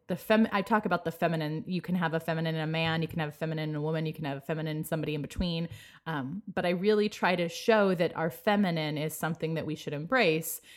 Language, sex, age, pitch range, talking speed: English, female, 20-39, 155-195 Hz, 265 wpm